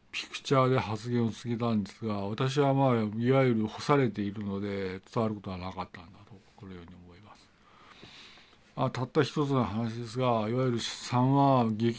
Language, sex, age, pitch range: Japanese, male, 50-69, 105-130 Hz